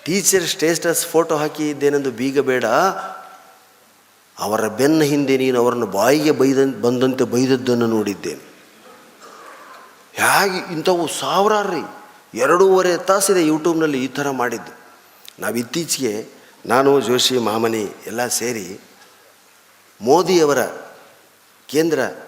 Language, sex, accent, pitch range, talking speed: Kannada, male, native, 115-155 Hz, 90 wpm